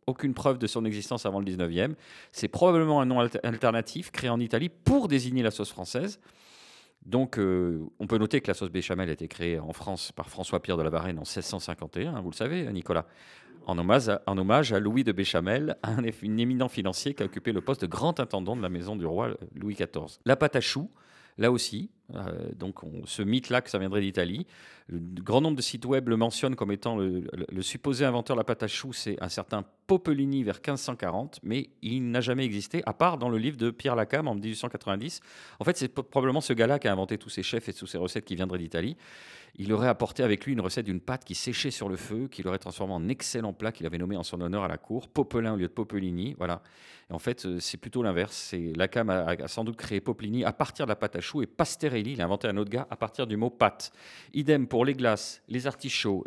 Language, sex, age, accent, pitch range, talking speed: French, male, 40-59, French, 95-130 Hz, 240 wpm